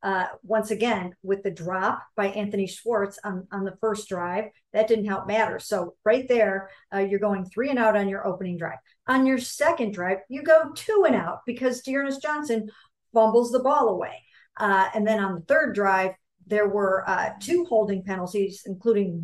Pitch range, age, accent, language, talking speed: 195-235 Hz, 50-69, American, English, 190 wpm